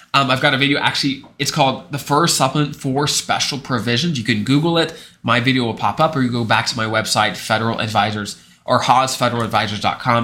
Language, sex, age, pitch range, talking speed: English, male, 20-39, 120-165 Hz, 200 wpm